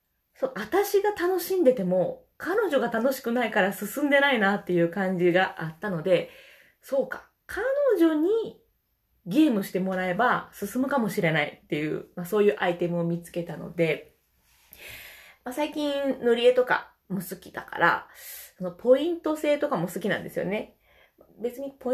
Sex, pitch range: female, 185-280 Hz